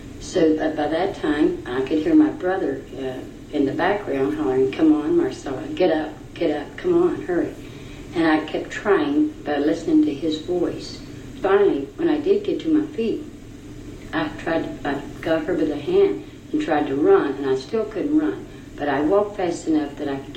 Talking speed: 195 wpm